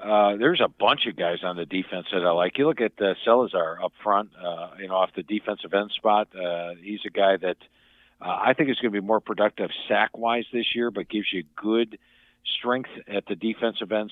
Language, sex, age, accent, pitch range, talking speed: English, male, 50-69, American, 95-115 Hz, 225 wpm